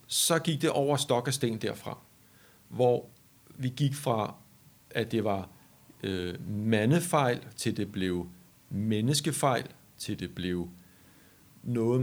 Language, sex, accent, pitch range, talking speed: Danish, male, native, 100-125 Hz, 115 wpm